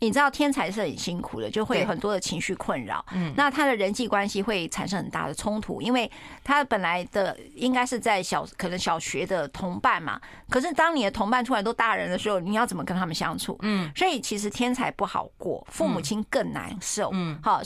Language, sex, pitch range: Chinese, female, 185-250 Hz